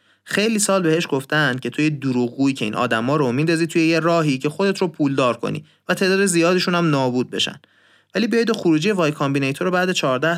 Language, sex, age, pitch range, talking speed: Persian, male, 30-49, 125-170 Hz, 200 wpm